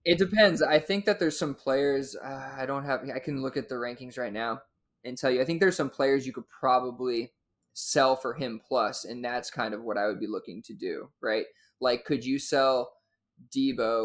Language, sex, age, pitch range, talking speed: English, male, 20-39, 120-140 Hz, 220 wpm